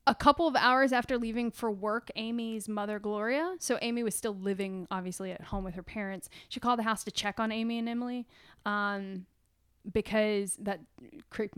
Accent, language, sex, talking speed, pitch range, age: American, English, female, 185 wpm, 210-260 Hz, 10-29